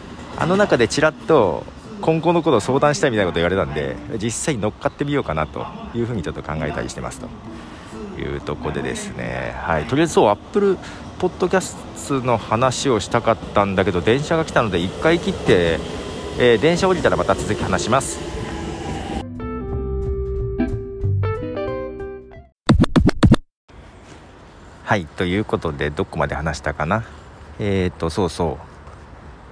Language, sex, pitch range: Japanese, male, 85-120 Hz